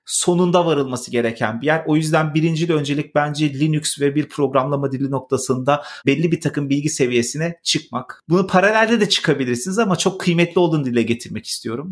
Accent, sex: native, male